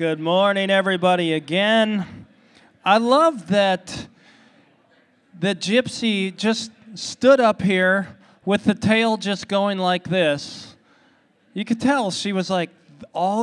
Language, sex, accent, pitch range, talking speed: English, male, American, 145-195 Hz, 120 wpm